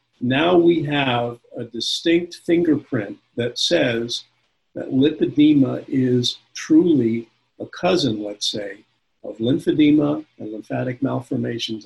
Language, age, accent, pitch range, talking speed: English, 50-69, American, 110-140 Hz, 105 wpm